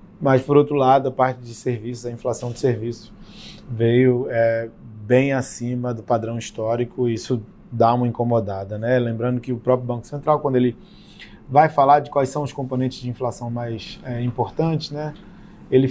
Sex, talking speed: male, 175 wpm